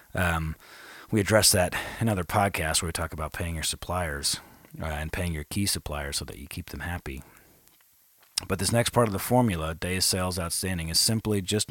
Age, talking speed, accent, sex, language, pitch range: 30-49, 205 wpm, American, male, English, 80-95 Hz